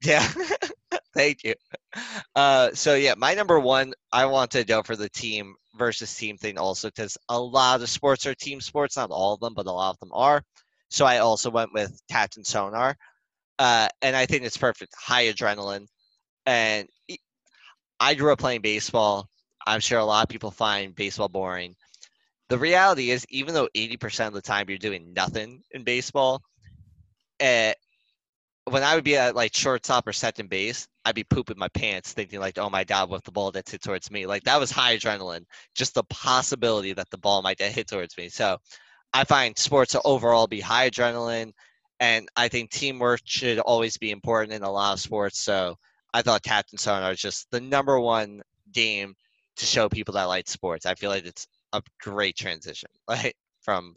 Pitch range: 100-130 Hz